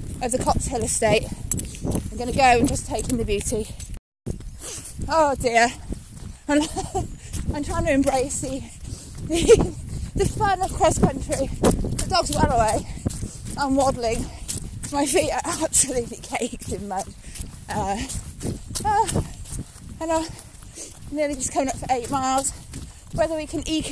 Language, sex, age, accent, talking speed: English, female, 20-39, British, 145 wpm